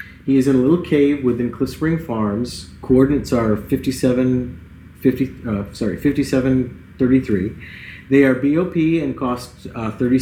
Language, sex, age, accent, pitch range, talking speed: English, male, 40-59, American, 115-155 Hz, 115 wpm